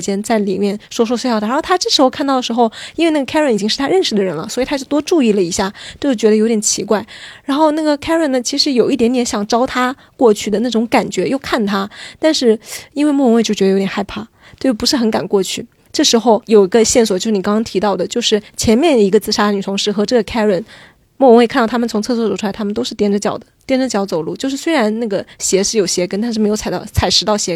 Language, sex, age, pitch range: Chinese, female, 20-39, 210-270 Hz